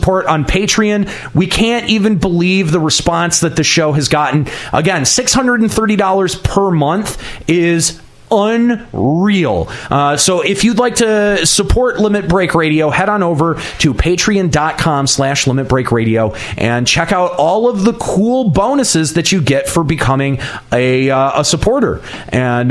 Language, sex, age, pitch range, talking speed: English, male, 30-49, 140-190 Hz, 145 wpm